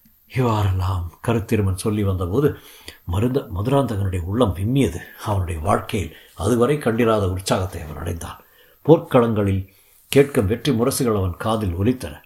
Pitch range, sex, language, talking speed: 100-140 Hz, male, Tamil, 110 wpm